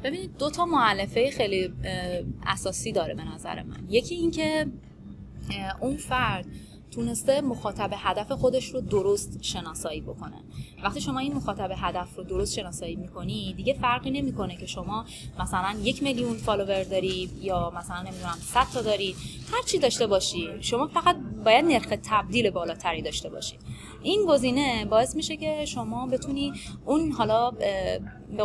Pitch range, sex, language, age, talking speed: 185-255 Hz, female, Persian, 20-39, 145 wpm